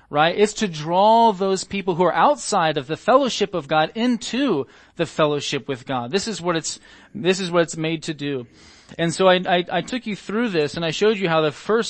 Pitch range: 145-200 Hz